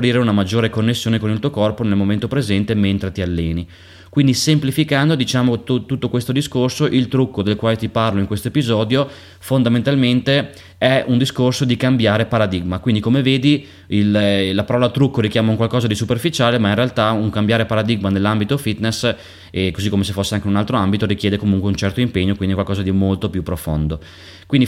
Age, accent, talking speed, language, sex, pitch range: 20-39, native, 185 wpm, Italian, male, 100-125 Hz